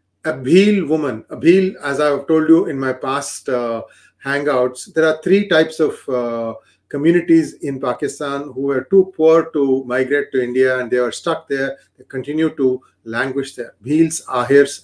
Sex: male